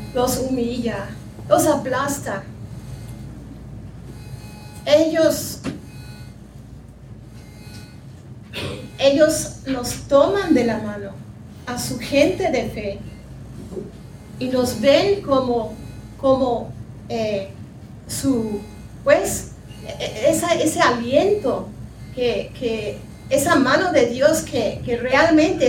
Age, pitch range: 40-59, 210-285 Hz